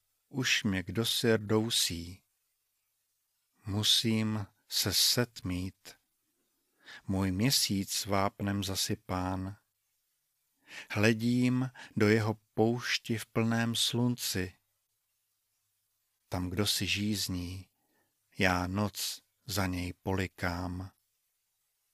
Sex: male